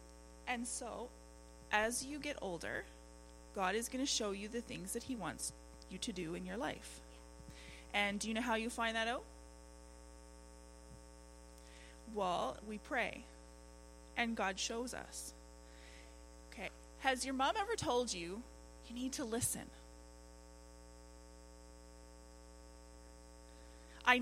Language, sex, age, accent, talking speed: English, female, 30-49, American, 125 wpm